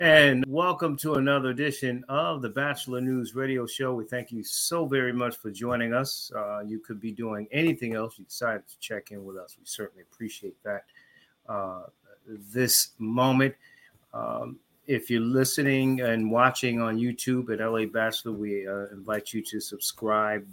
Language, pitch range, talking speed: English, 105-130 Hz, 170 wpm